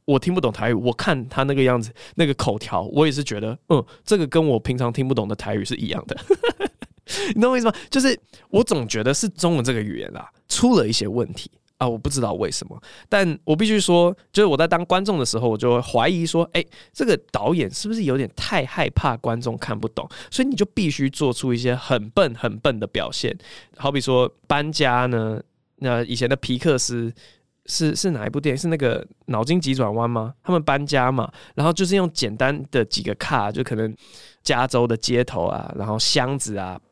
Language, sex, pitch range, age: Chinese, male, 125-195 Hz, 20-39